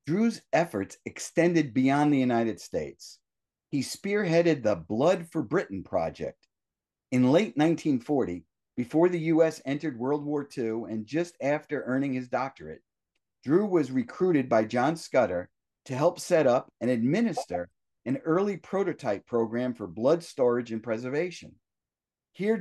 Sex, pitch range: male, 120-165 Hz